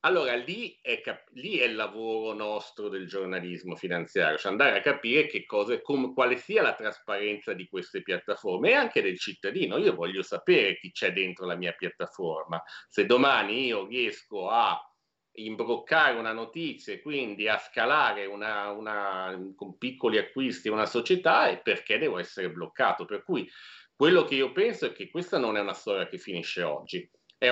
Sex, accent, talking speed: male, native, 175 wpm